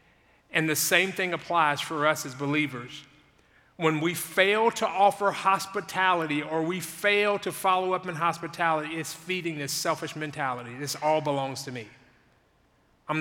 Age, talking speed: 40-59, 155 wpm